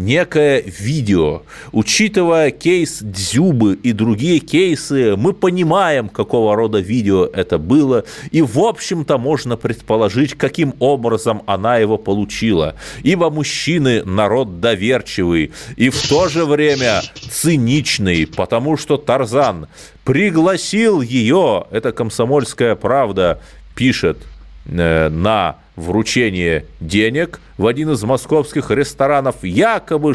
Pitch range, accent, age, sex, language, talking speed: 105-150 Hz, native, 30-49, male, Russian, 105 wpm